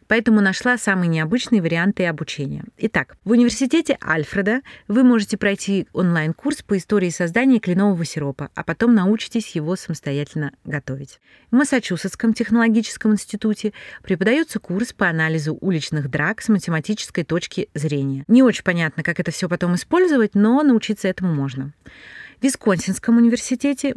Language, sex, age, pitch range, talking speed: Russian, female, 30-49, 155-220 Hz, 135 wpm